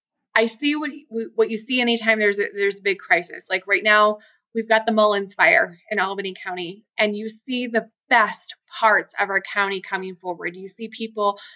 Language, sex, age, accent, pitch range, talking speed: English, female, 20-39, American, 190-225 Hz, 195 wpm